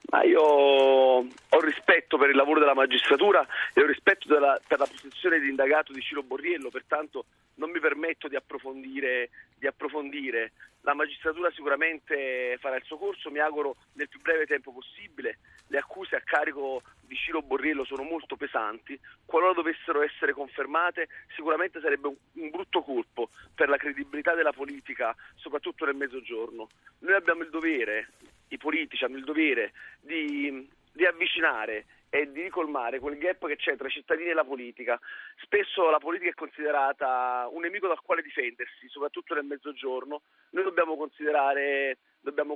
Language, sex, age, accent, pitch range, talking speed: Italian, male, 40-59, native, 140-165 Hz, 155 wpm